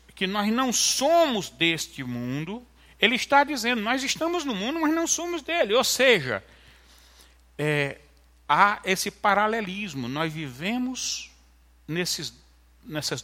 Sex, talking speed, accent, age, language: male, 115 wpm, Brazilian, 60-79, Portuguese